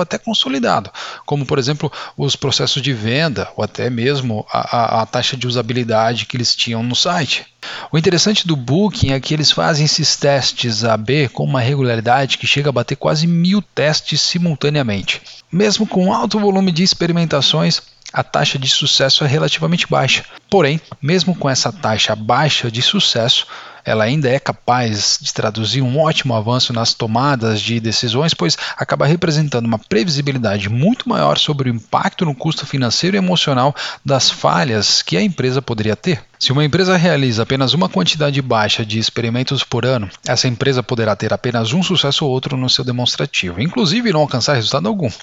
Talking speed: 175 wpm